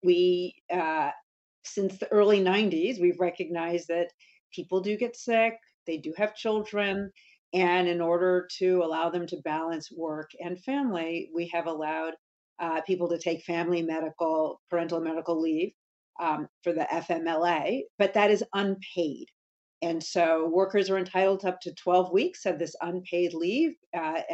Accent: American